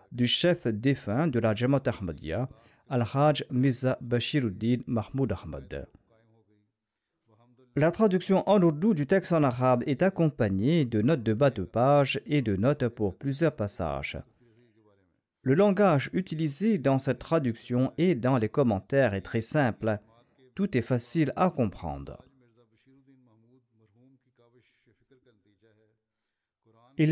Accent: French